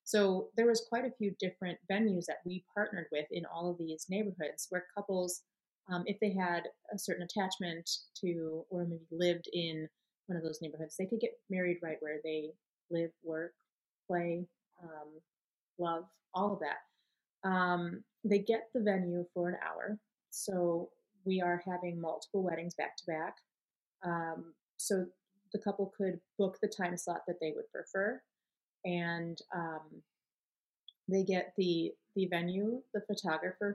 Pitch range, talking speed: 170-200 Hz, 160 wpm